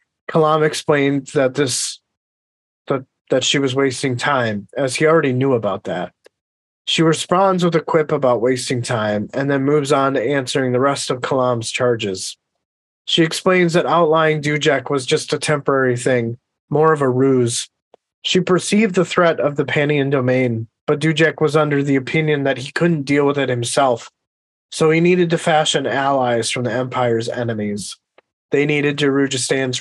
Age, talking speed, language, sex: 30-49, 165 wpm, English, male